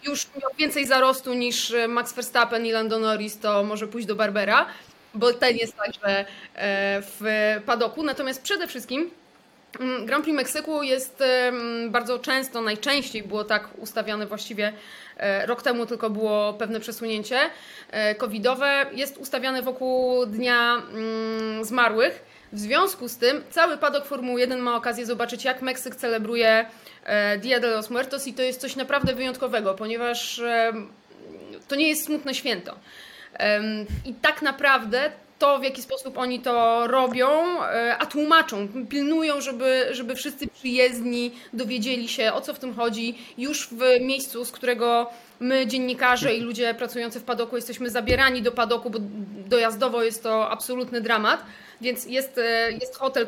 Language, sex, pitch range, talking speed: Polish, female, 230-265 Hz, 145 wpm